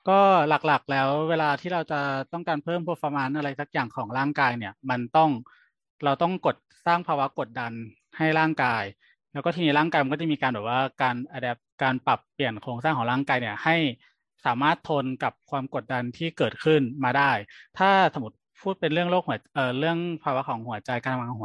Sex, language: male, Thai